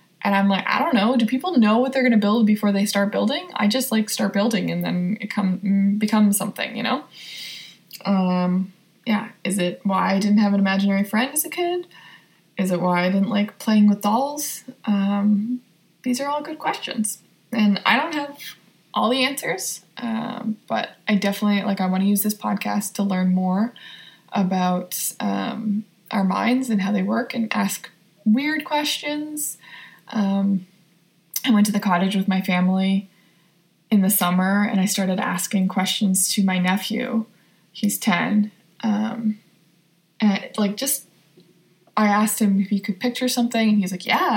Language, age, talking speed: English, 20-39, 175 wpm